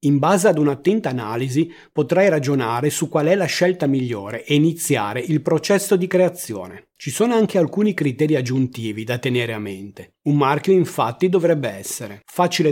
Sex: male